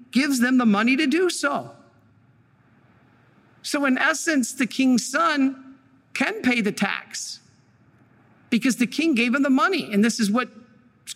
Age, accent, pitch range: 50-69, American, 185-255 Hz